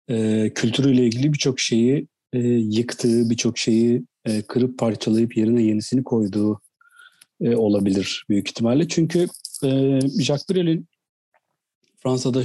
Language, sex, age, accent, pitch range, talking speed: Turkish, male, 40-59, native, 115-155 Hz, 115 wpm